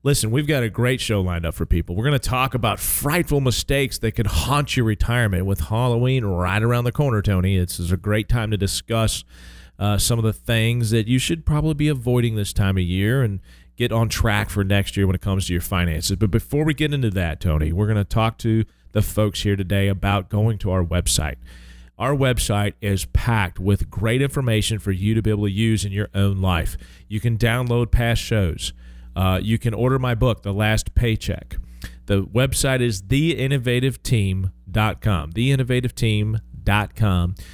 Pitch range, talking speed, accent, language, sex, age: 95-120 Hz, 195 wpm, American, English, male, 40-59